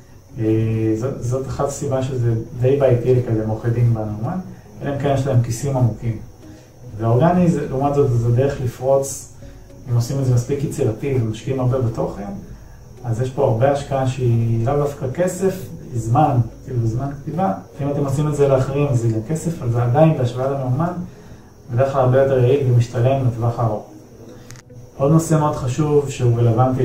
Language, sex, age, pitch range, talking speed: Hebrew, male, 30-49, 115-135 Hz, 170 wpm